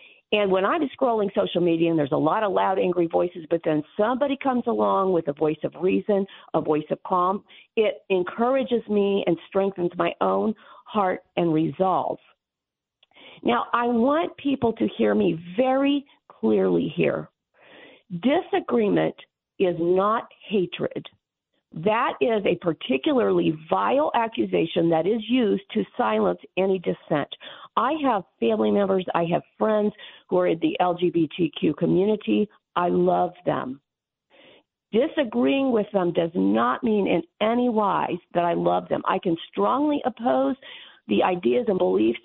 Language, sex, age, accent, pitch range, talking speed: English, female, 50-69, American, 170-235 Hz, 145 wpm